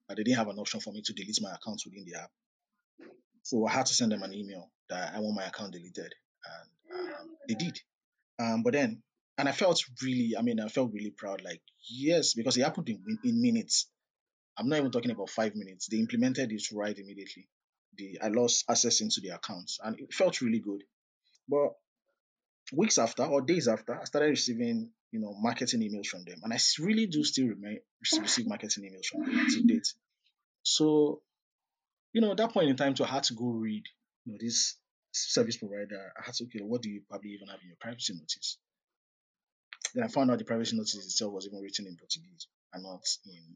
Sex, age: male, 20-39